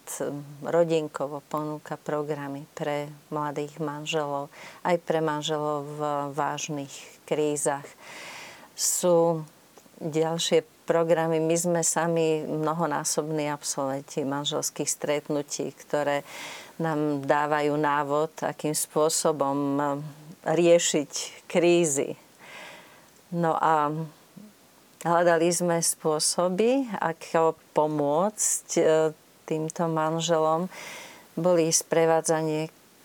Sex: female